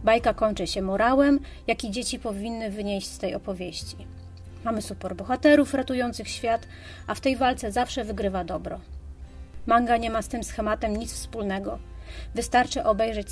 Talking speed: 150 wpm